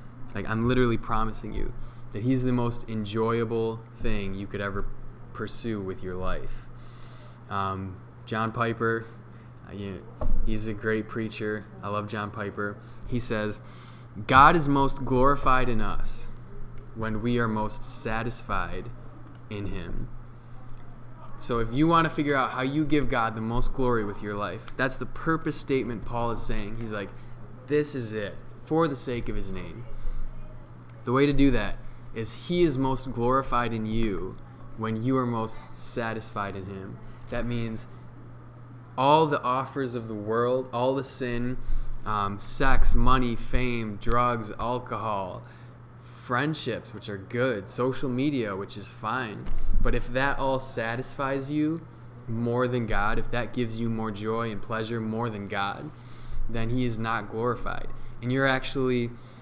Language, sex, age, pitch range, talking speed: English, male, 20-39, 110-125 Hz, 155 wpm